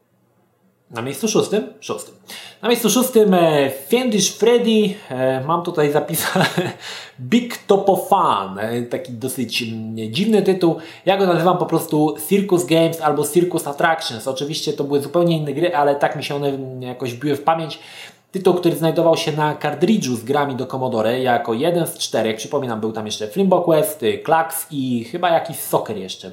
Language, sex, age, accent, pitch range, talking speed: Polish, male, 20-39, native, 130-175 Hz, 160 wpm